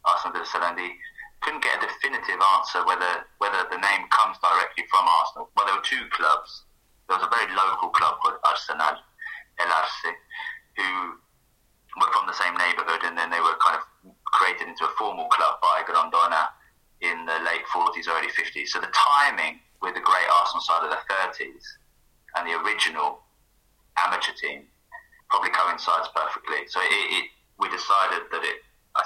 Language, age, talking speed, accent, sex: English, 20-39, 170 wpm, British, male